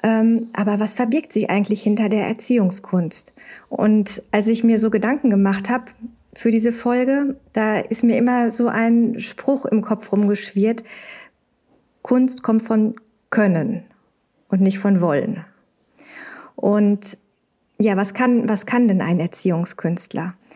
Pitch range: 205-235 Hz